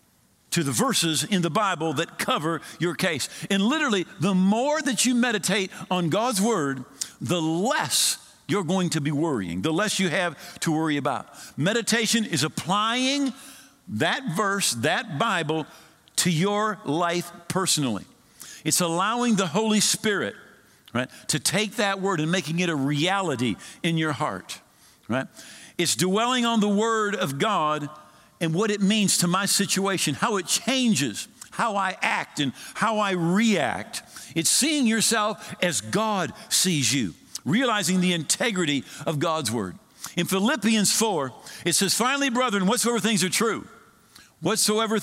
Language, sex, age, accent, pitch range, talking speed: English, male, 50-69, American, 165-210 Hz, 150 wpm